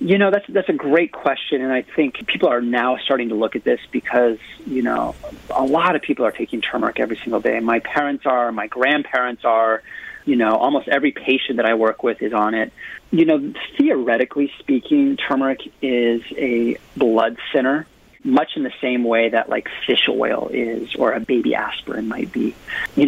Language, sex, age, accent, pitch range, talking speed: English, male, 30-49, American, 115-140 Hz, 195 wpm